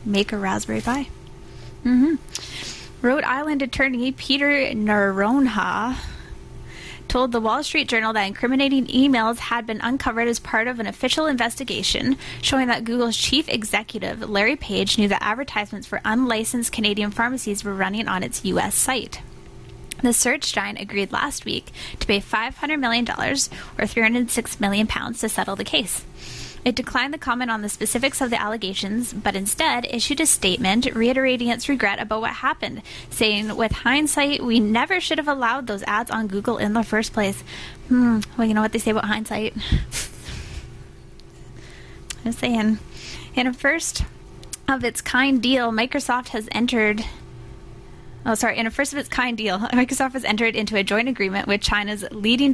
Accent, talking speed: American, 160 wpm